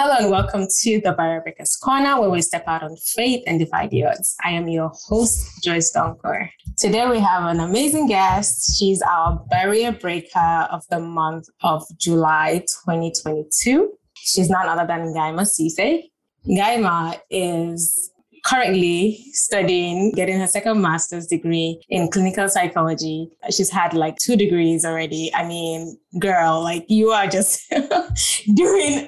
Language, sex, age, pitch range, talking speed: English, female, 20-39, 165-205 Hz, 150 wpm